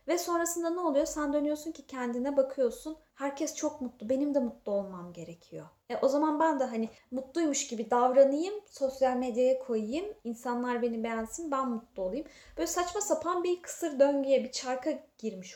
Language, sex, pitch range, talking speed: Turkish, female, 220-285 Hz, 170 wpm